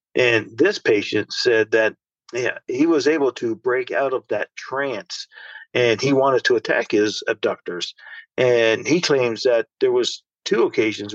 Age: 50-69